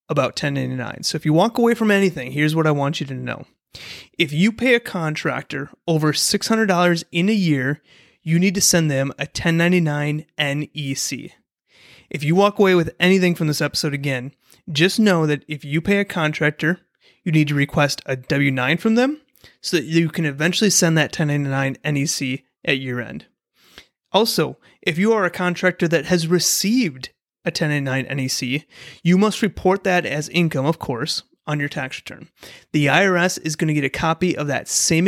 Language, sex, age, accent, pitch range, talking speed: English, male, 30-49, American, 140-180 Hz, 185 wpm